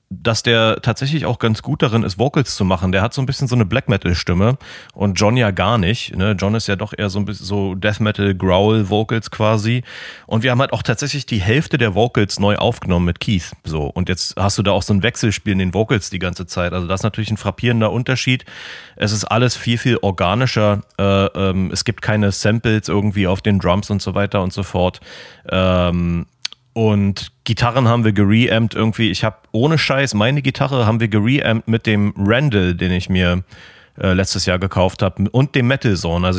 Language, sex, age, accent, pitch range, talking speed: German, male, 30-49, German, 95-115 Hz, 210 wpm